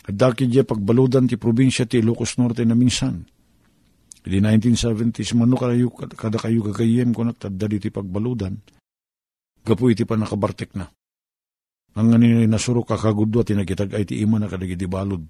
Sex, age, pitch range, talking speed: male, 50-69, 85-120 Hz, 155 wpm